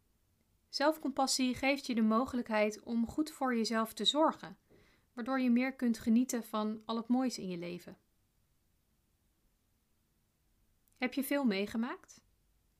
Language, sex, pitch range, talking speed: Dutch, female, 215-260 Hz, 125 wpm